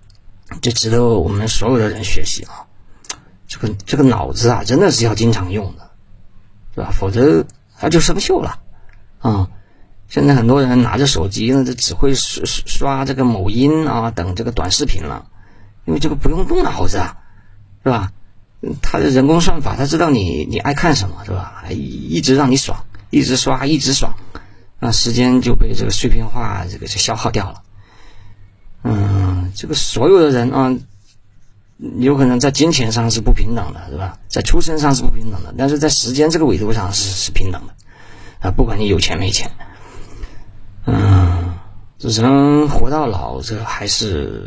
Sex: male